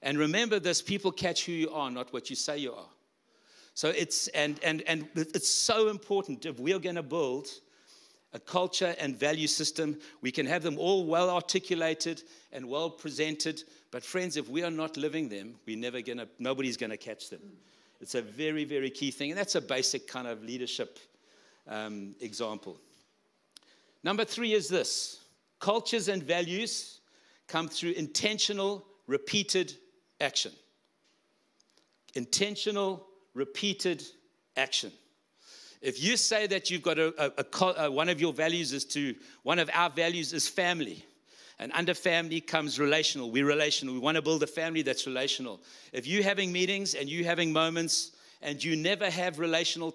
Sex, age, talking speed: male, 60-79, 165 wpm